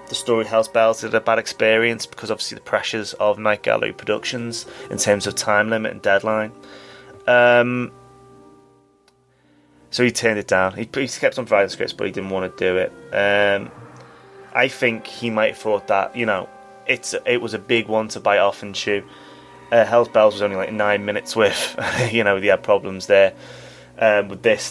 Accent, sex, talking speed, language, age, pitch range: British, male, 195 wpm, English, 20-39, 100-120 Hz